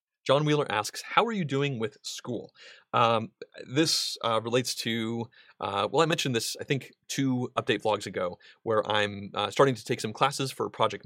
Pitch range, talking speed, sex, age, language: 110-155 Hz, 190 wpm, male, 30-49, English